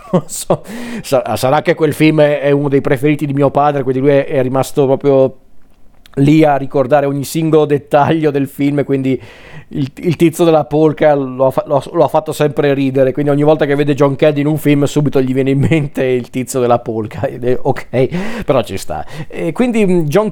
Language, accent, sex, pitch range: Italian, native, male, 135-160 Hz